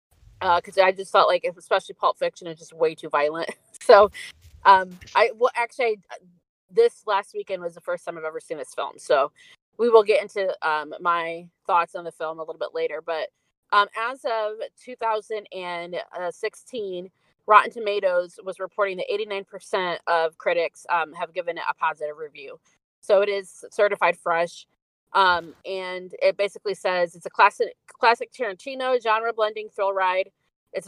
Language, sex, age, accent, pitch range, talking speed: English, female, 30-49, American, 175-235 Hz, 165 wpm